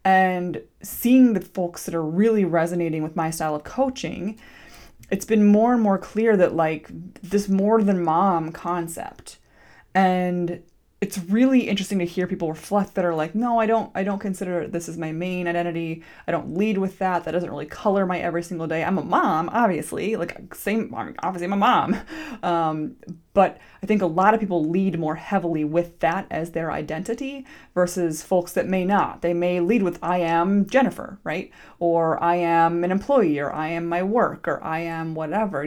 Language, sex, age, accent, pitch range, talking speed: English, female, 20-39, American, 165-210 Hz, 190 wpm